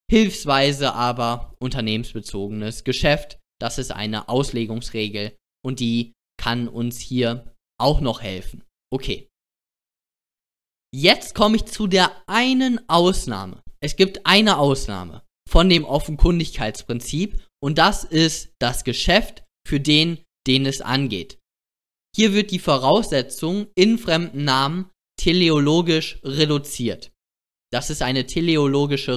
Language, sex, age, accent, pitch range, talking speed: German, male, 20-39, German, 120-170 Hz, 110 wpm